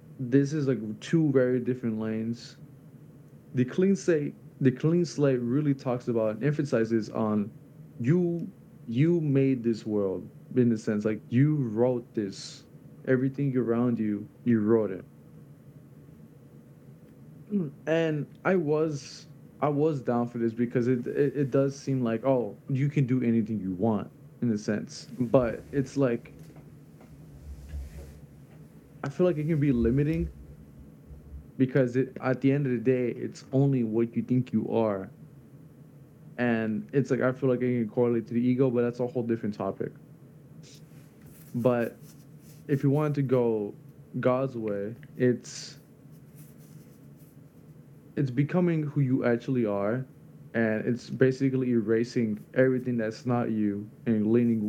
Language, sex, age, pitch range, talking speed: English, male, 20-39, 115-145 Hz, 145 wpm